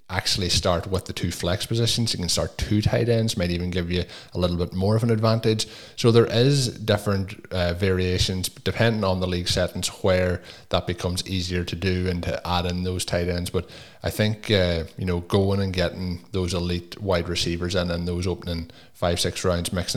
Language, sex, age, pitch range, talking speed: English, male, 20-39, 85-95 Hz, 210 wpm